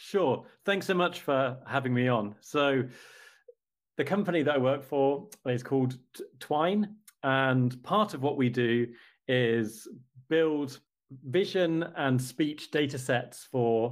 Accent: British